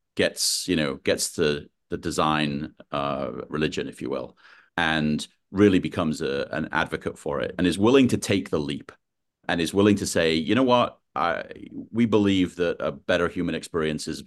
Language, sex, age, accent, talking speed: English, male, 40-59, British, 185 wpm